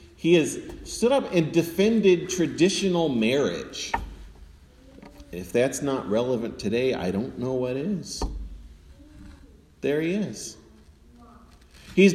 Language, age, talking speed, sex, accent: English, 40-59, 110 wpm, male, American